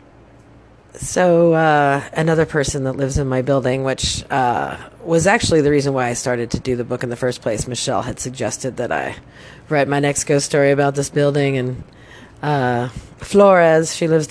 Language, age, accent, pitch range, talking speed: English, 30-49, American, 120-145 Hz, 185 wpm